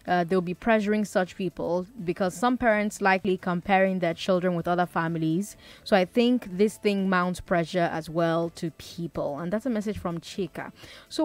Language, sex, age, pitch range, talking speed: English, female, 20-39, 175-225 Hz, 180 wpm